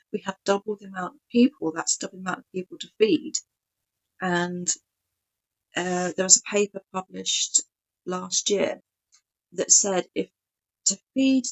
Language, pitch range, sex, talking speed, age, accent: English, 170-200 Hz, female, 150 wpm, 40-59, British